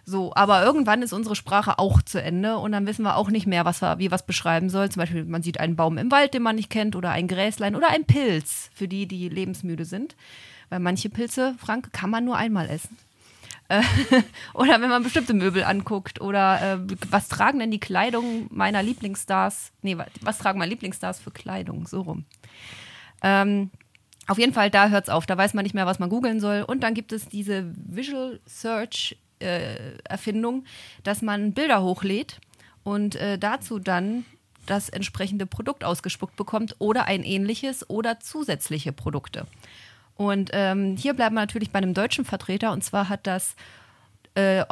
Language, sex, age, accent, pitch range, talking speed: German, female, 30-49, German, 180-220 Hz, 185 wpm